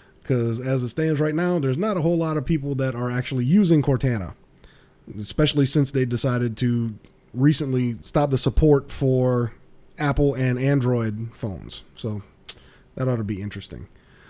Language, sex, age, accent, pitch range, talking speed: English, male, 30-49, American, 120-150 Hz, 160 wpm